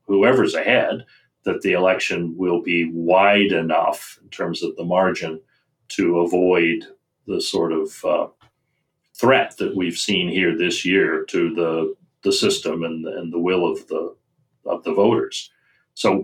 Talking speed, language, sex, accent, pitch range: 150 wpm, English, male, American, 90-135 Hz